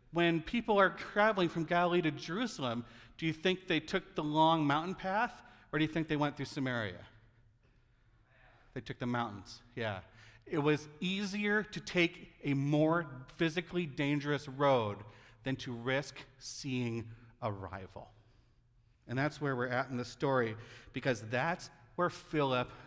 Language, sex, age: English, male, 40-59